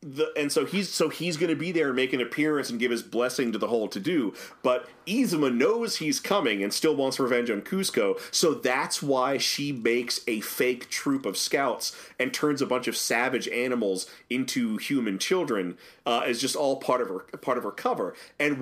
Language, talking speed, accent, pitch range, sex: English, 215 wpm, American, 115-160 Hz, male